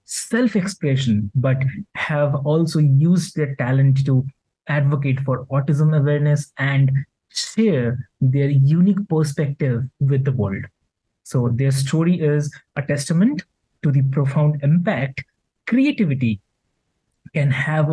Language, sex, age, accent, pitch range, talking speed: English, male, 20-39, Indian, 130-155 Hz, 110 wpm